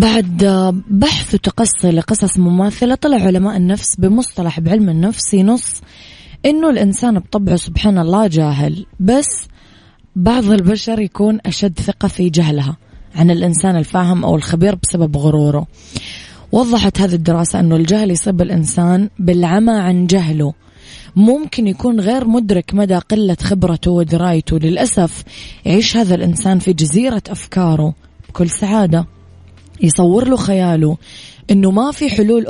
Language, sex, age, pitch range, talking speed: Arabic, female, 20-39, 170-210 Hz, 125 wpm